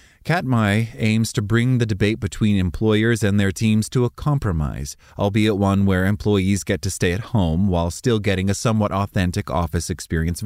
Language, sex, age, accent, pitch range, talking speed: English, male, 30-49, American, 95-125 Hz, 180 wpm